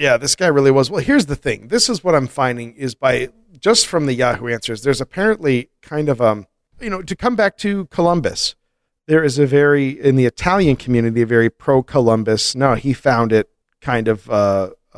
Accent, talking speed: American, 205 wpm